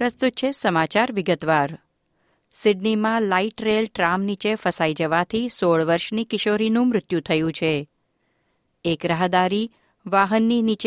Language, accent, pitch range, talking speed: Gujarati, native, 165-220 Hz, 85 wpm